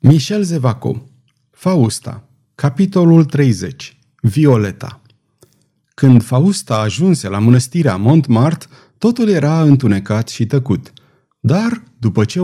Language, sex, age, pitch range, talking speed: Romanian, male, 30-49, 115-155 Hz, 95 wpm